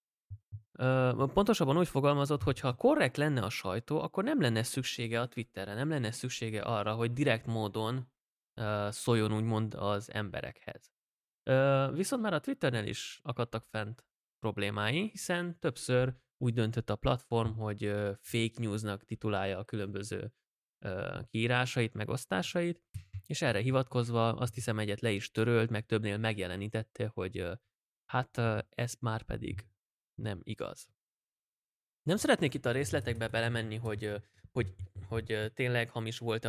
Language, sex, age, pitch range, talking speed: Hungarian, male, 20-39, 110-135 Hz, 130 wpm